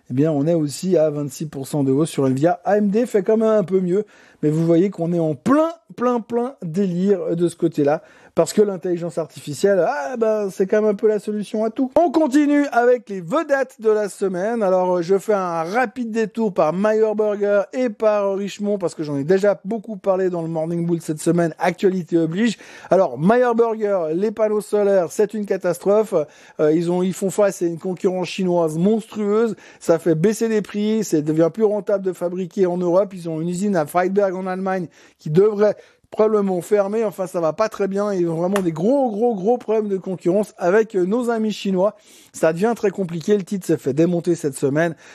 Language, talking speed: French, 210 wpm